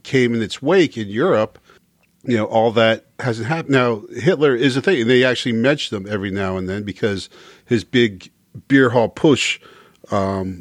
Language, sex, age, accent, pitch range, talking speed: English, male, 40-59, American, 100-130 Hz, 185 wpm